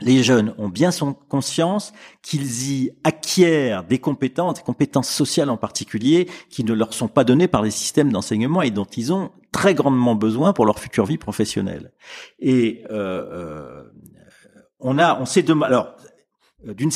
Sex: male